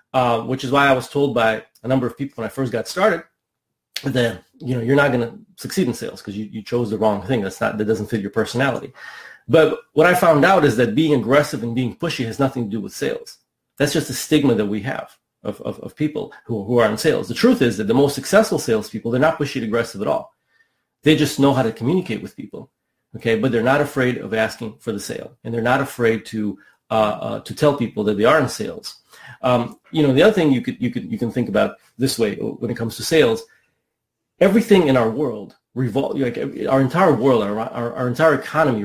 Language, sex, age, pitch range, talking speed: English, male, 30-49, 115-140 Hz, 240 wpm